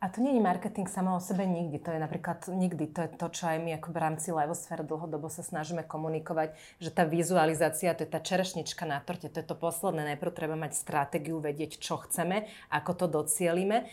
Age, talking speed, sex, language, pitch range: 30-49, 210 wpm, female, Slovak, 160-185 Hz